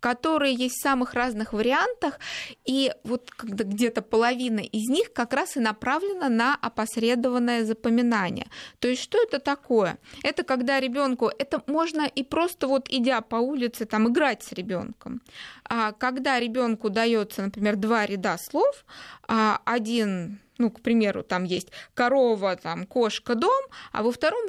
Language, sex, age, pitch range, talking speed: Russian, female, 20-39, 225-275 Hz, 145 wpm